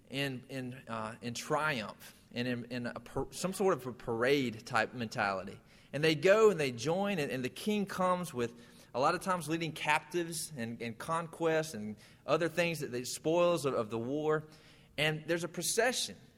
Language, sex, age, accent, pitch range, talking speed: English, male, 30-49, American, 125-180 Hz, 185 wpm